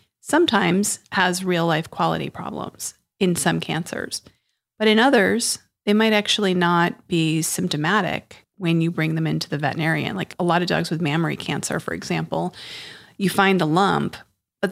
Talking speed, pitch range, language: 165 wpm, 170-215 Hz, English